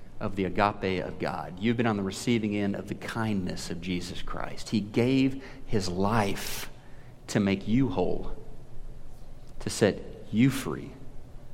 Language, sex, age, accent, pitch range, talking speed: English, male, 40-59, American, 105-135 Hz, 150 wpm